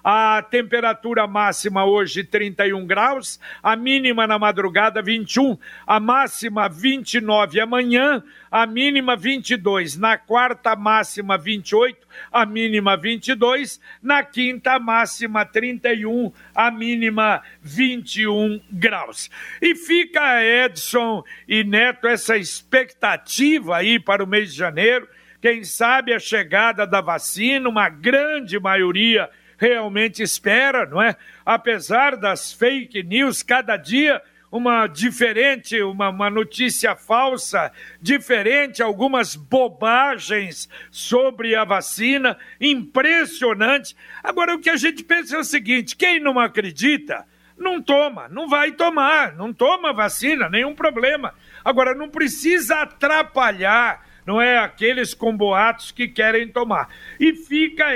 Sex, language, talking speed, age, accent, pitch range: male, Portuguese, 120 wpm, 60-79, Brazilian, 215-265 Hz